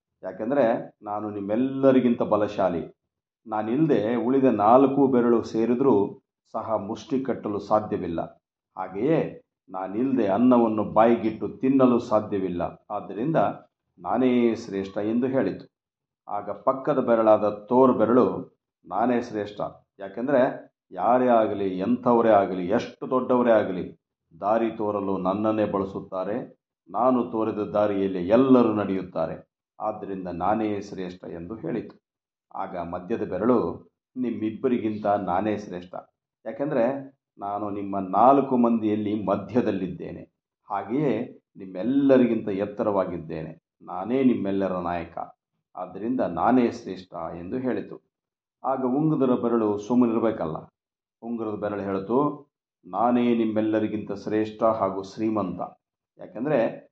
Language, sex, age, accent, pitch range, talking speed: Kannada, male, 50-69, native, 100-120 Hz, 95 wpm